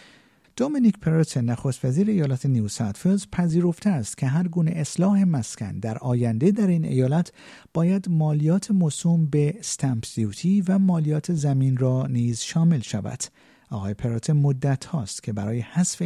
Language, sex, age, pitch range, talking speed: Persian, male, 50-69, 120-165 Hz, 145 wpm